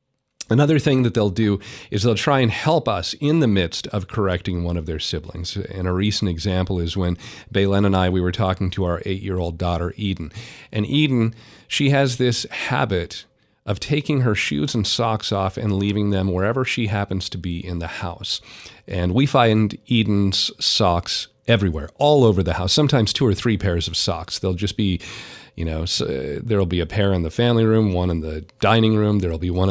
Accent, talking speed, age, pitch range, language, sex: American, 200 wpm, 40-59, 90-115 Hz, English, male